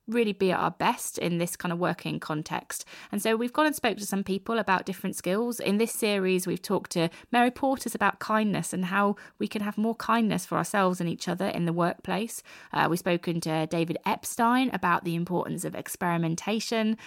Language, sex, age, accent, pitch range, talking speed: English, female, 20-39, British, 175-215 Hz, 205 wpm